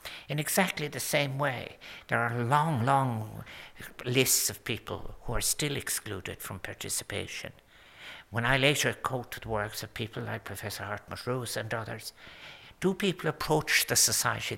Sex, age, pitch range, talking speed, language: male, 60-79, 110-135 Hz, 150 wpm, English